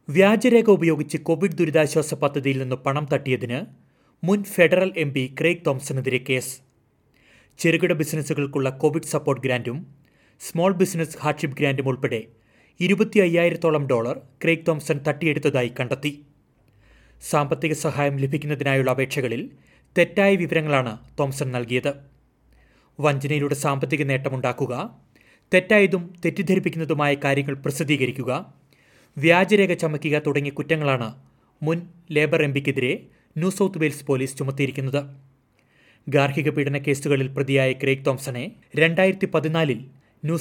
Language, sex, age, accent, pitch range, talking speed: Malayalam, male, 30-49, native, 135-165 Hz, 100 wpm